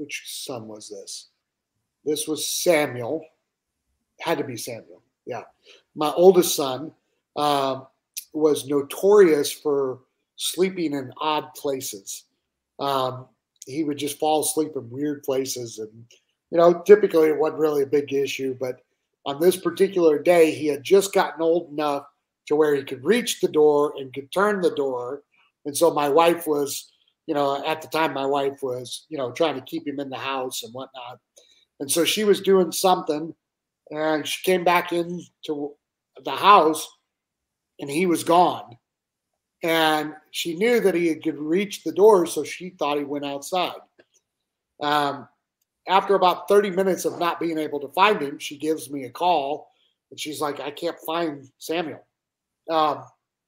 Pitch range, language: 145-175 Hz, English